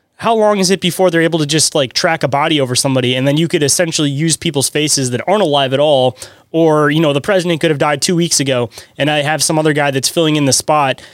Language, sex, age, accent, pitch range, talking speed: English, male, 20-39, American, 140-170 Hz, 270 wpm